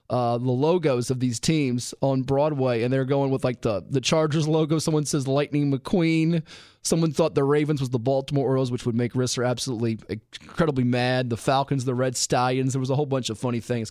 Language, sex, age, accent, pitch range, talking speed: English, male, 30-49, American, 125-160 Hz, 210 wpm